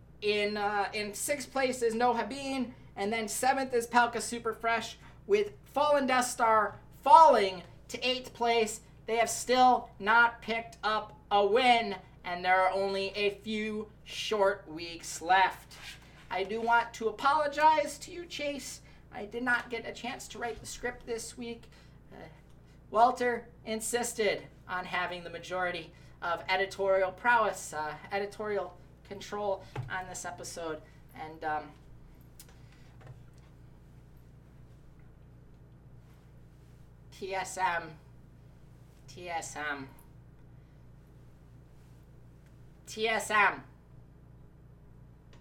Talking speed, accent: 105 wpm, American